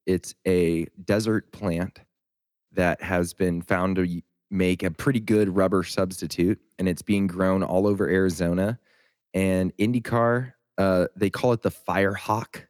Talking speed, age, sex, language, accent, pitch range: 140 wpm, 20-39, male, English, American, 95-120 Hz